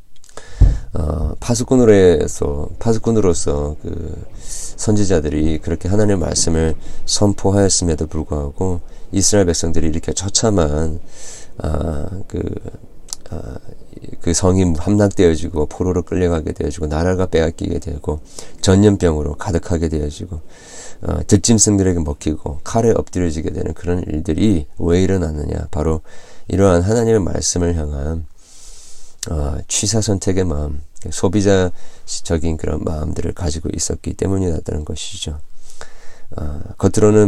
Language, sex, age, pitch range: Korean, male, 40-59, 80-95 Hz